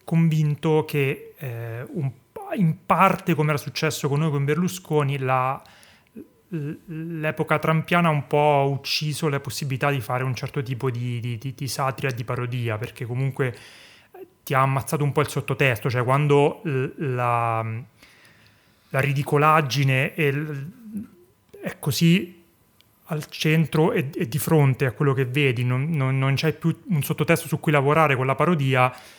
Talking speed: 150 wpm